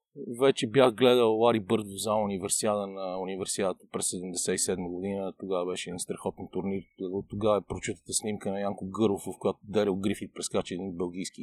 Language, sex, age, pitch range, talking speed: Bulgarian, male, 40-59, 105-135 Hz, 165 wpm